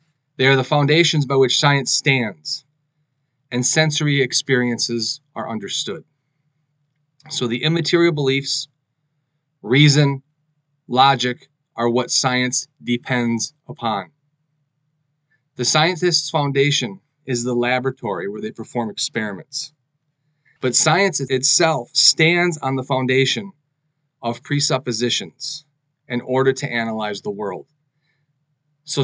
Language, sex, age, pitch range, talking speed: English, male, 30-49, 130-150 Hz, 105 wpm